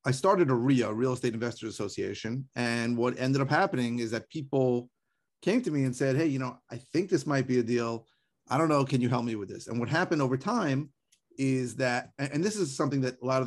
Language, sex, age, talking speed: English, male, 30-49, 245 wpm